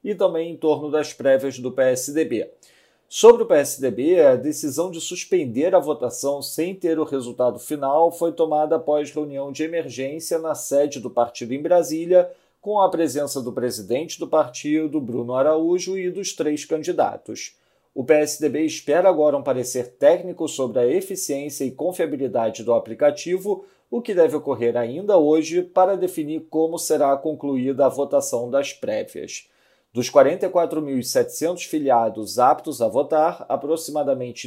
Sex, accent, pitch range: male, Brazilian, 135-180 Hz